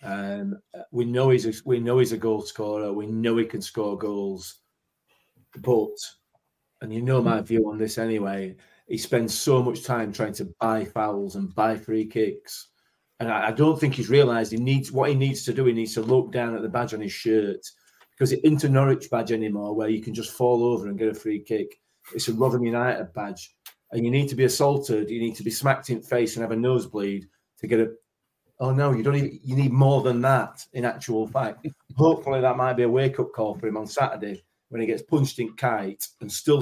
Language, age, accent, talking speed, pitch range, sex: English, 30-49, British, 230 wpm, 110-130 Hz, male